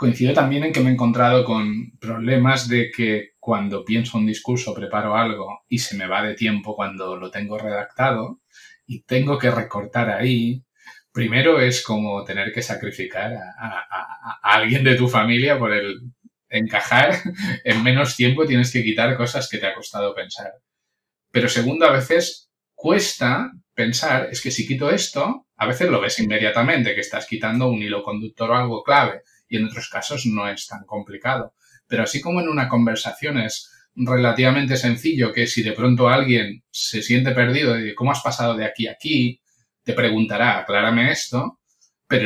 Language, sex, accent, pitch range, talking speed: English, male, Spanish, 110-125 Hz, 175 wpm